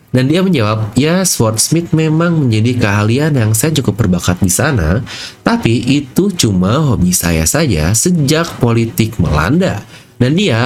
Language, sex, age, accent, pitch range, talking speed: English, male, 30-49, Indonesian, 105-155 Hz, 140 wpm